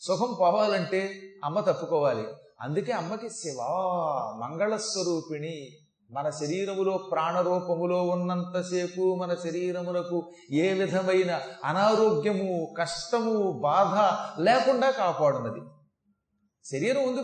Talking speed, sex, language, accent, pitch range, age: 80 wpm, male, Telugu, native, 155-210 Hz, 30-49